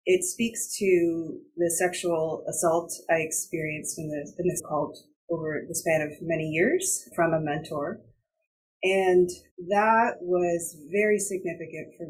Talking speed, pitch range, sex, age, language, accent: 135 wpm, 160-195 Hz, female, 30-49, English, American